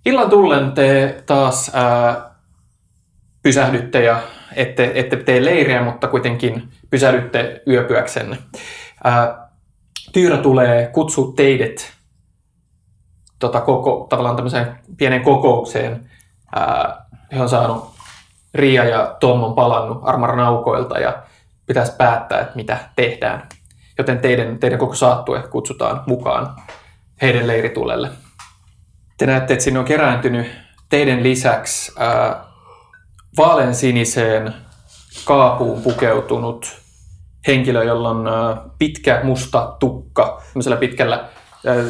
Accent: native